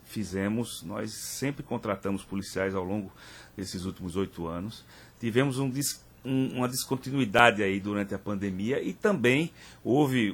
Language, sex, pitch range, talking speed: Portuguese, male, 100-130 Hz, 120 wpm